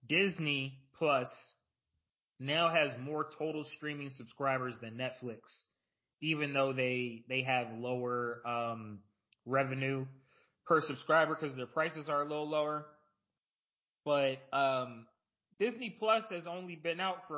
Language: English